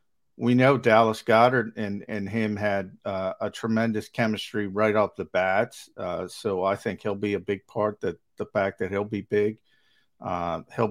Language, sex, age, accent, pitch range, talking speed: English, male, 50-69, American, 100-125 Hz, 185 wpm